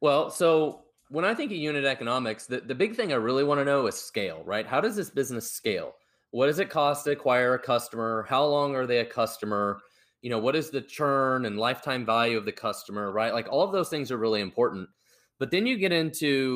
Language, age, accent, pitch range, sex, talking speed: English, 20-39, American, 110-140 Hz, male, 235 wpm